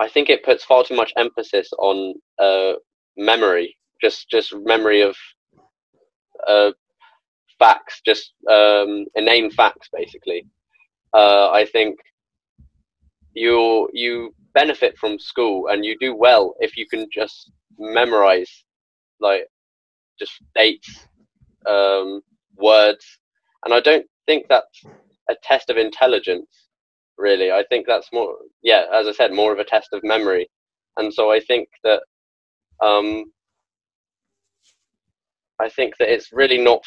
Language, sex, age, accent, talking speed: English, male, 10-29, British, 130 wpm